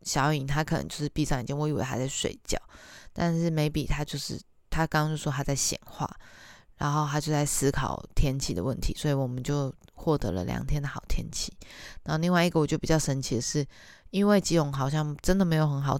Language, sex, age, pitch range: Chinese, female, 20-39, 145-175 Hz